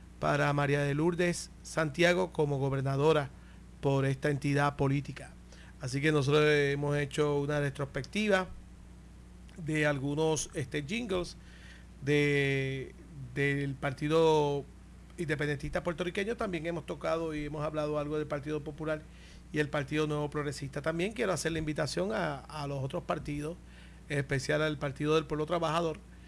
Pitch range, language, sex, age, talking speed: 145-180 Hz, Spanish, male, 40-59, 130 wpm